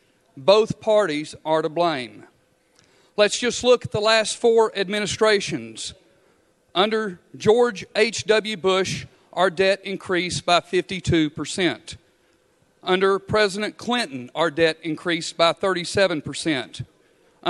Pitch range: 165-200 Hz